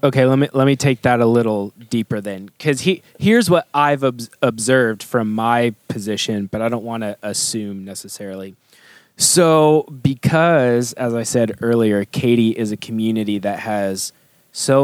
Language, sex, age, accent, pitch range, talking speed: English, male, 20-39, American, 115-145 Hz, 165 wpm